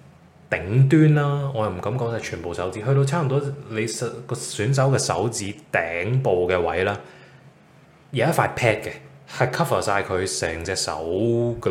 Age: 20-39